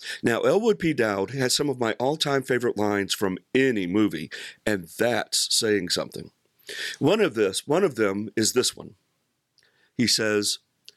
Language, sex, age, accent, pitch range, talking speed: English, male, 50-69, American, 115-155 Hz, 160 wpm